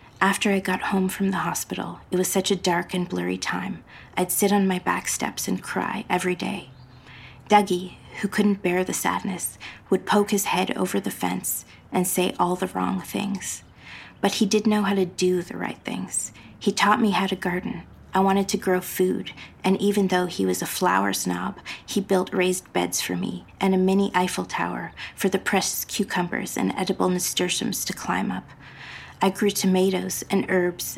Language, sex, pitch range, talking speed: English, female, 160-195 Hz, 190 wpm